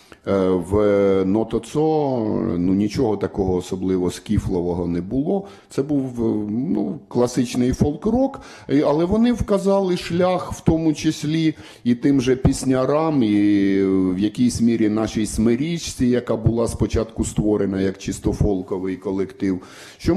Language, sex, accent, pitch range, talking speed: Ukrainian, male, native, 100-145 Hz, 120 wpm